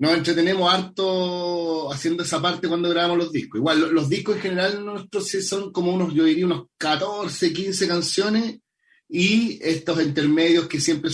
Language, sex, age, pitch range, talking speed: English, male, 30-49, 145-180 Hz, 165 wpm